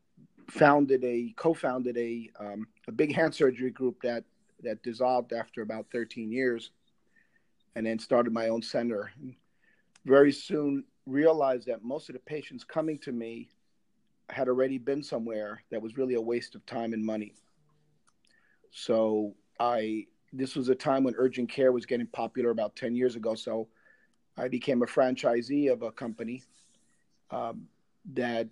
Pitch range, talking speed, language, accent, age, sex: 115-130 Hz, 155 wpm, English, American, 40-59, male